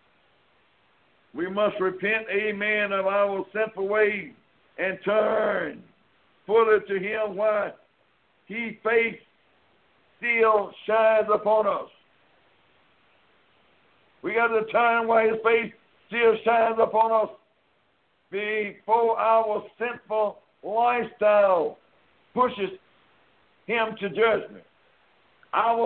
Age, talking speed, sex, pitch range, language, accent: 60-79, 95 wpm, male, 205-235 Hz, English, American